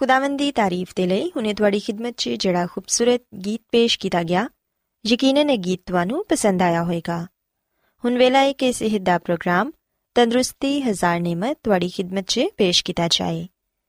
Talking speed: 155 wpm